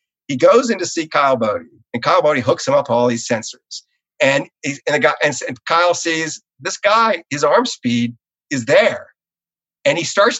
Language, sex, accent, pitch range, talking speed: English, male, American, 115-185 Hz, 200 wpm